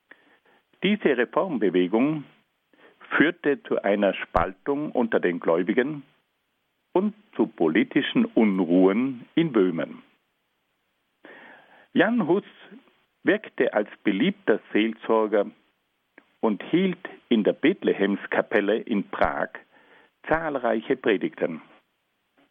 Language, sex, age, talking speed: German, male, 60-79, 80 wpm